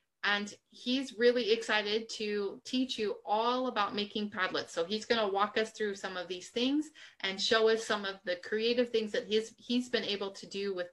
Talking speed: 210 wpm